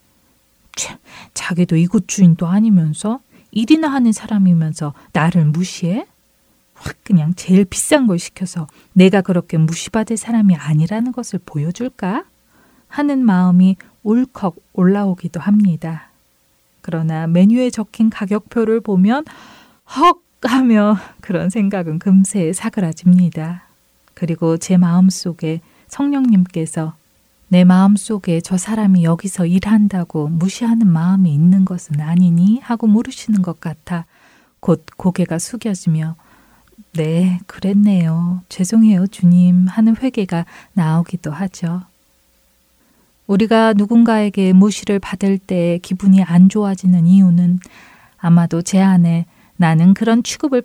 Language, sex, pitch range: Korean, female, 170-215 Hz